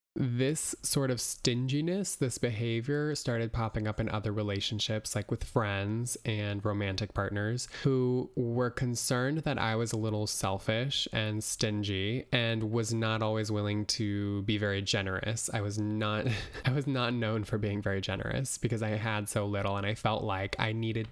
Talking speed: 170 wpm